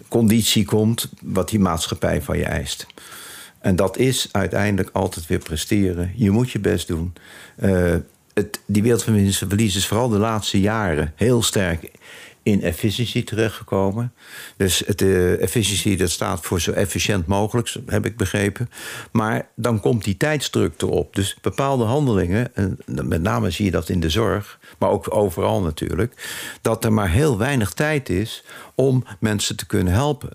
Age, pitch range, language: 50-69, 95-120 Hz, Dutch